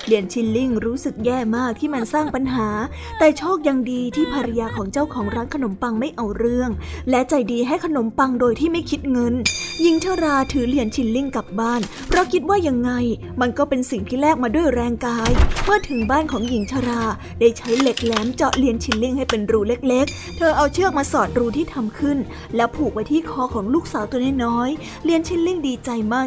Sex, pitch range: female, 235-300 Hz